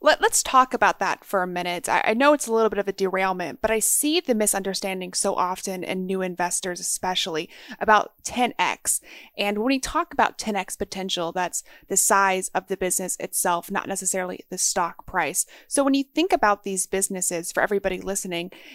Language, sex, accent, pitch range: English, female, American, 185-240 Hz